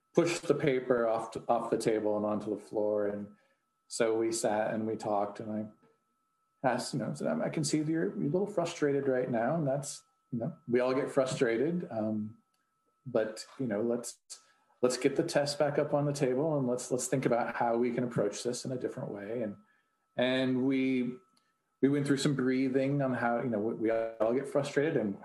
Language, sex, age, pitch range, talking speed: English, male, 40-59, 115-165 Hz, 215 wpm